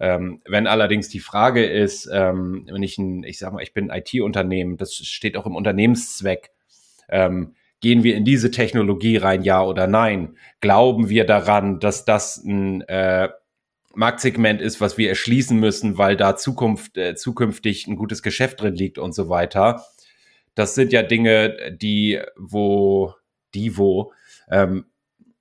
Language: German